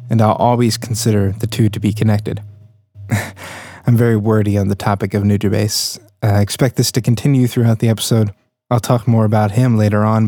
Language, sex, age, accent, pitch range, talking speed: English, male, 20-39, American, 110-125 Hz, 185 wpm